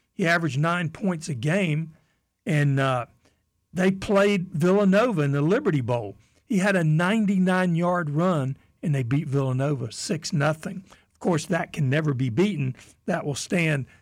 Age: 60-79